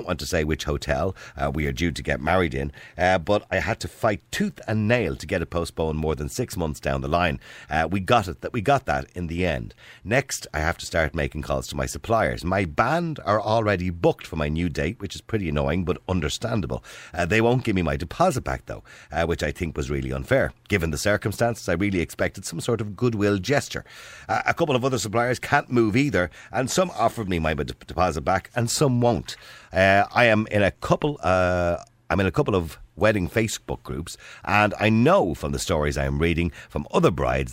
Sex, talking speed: male, 230 wpm